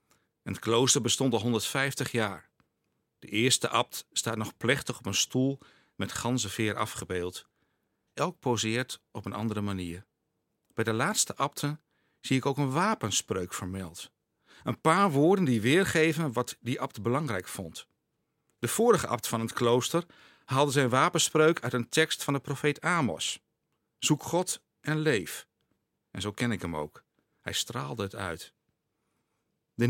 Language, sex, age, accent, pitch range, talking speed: Dutch, male, 50-69, Dutch, 105-145 Hz, 155 wpm